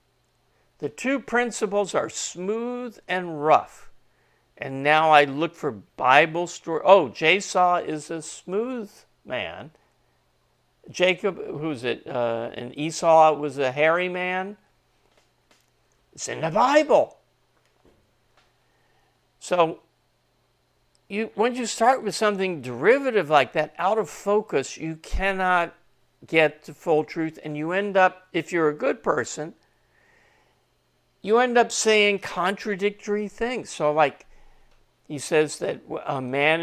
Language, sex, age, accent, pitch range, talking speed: English, male, 60-79, American, 150-200 Hz, 125 wpm